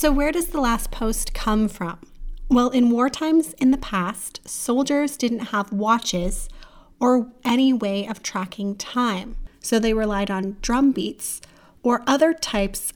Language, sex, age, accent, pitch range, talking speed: English, female, 30-49, American, 195-240 Hz, 160 wpm